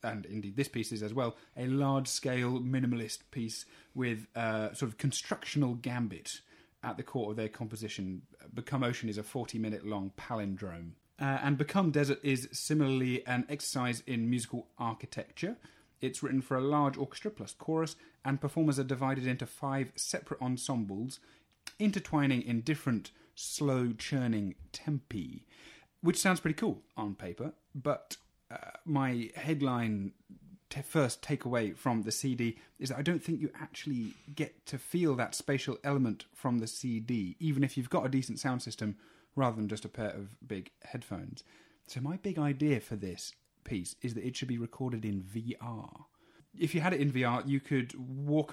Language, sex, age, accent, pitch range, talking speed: English, male, 30-49, British, 115-140 Hz, 165 wpm